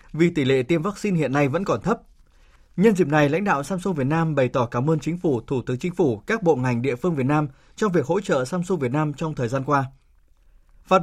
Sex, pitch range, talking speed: male, 130-175 Hz, 255 wpm